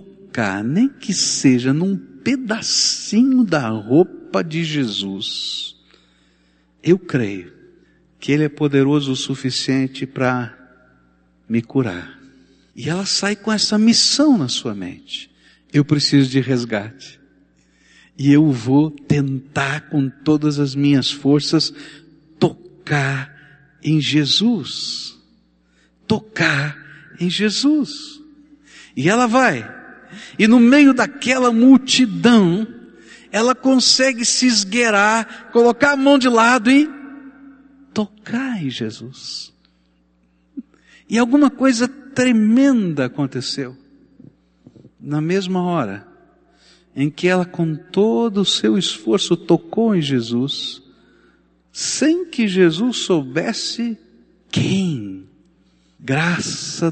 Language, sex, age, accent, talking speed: Portuguese, male, 60-79, Brazilian, 100 wpm